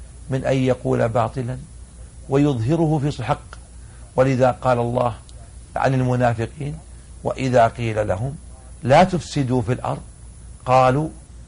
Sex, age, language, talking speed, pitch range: male, 50-69, Arabic, 105 wpm, 105-145 Hz